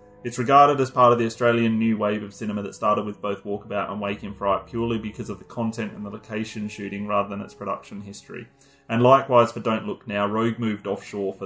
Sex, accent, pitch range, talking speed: male, Australian, 105-120 Hz, 230 wpm